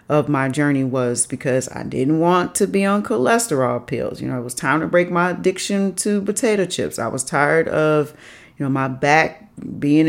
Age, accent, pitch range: 40-59, American, 135-175 Hz